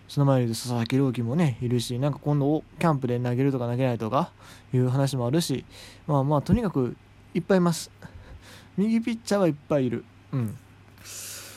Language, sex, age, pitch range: Japanese, male, 20-39, 115-165 Hz